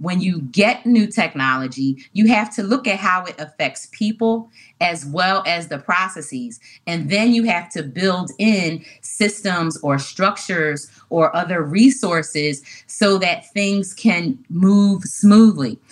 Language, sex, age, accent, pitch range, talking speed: English, female, 30-49, American, 155-205 Hz, 145 wpm